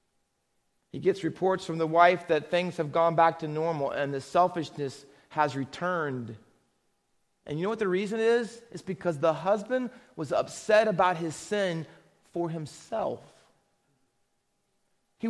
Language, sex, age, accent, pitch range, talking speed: English, male, 30-49, American, 175-230 Hz, 145 wpm